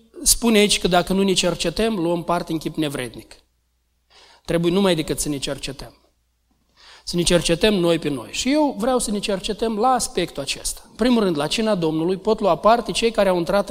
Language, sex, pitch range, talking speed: Romanian, male, 165-220 Hz, 200 wpm